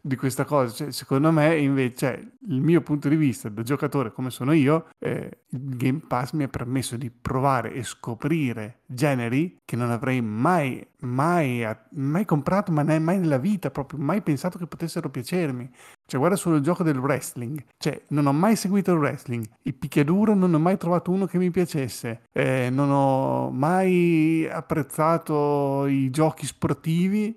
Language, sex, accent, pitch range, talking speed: Italian, male, native, 130-165 Hz, 170 wpm